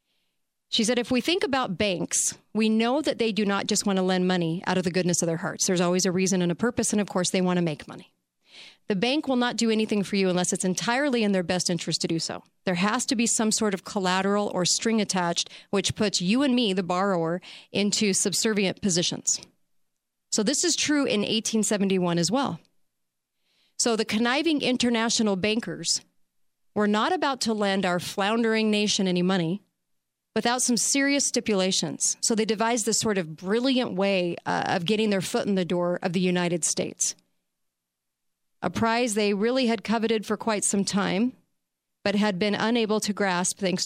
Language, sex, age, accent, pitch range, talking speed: English, female, 40-59, American, 180-225 Hz, 195 wpm